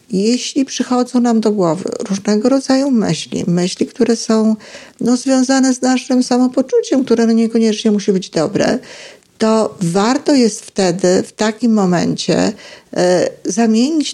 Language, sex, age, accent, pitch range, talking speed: Polish, female, 50-69, native, 190-235 Hz, 125 wpm